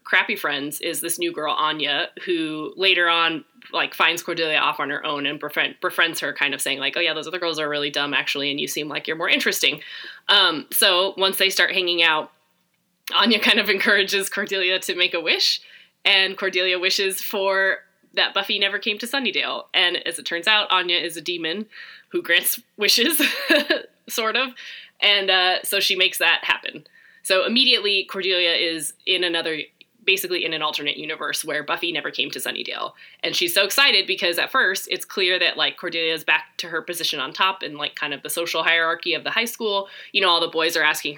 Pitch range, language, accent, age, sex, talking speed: 160-205 Hz, English, American, 20-39, female, 205 wpm